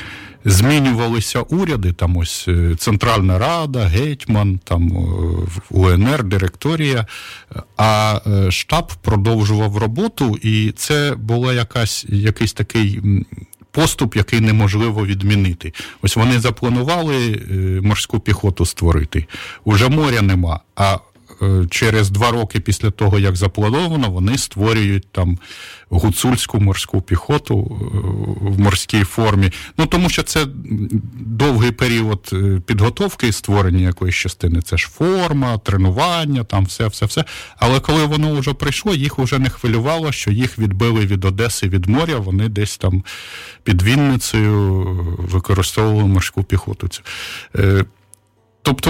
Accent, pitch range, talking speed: native, 95-125 Hz, 110 wpm